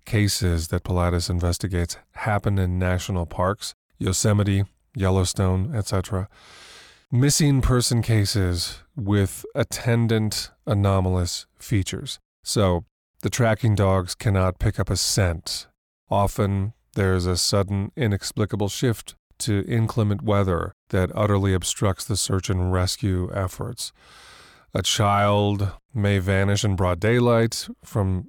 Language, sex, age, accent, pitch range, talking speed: English, male, 30-49, American, 95-110 Hz, 110 wpm